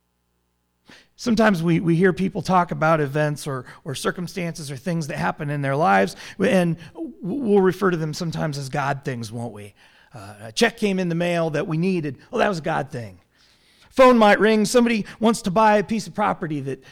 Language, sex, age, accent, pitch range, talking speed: English, male, 40-59, American, 160-235 Hz, 205 wpm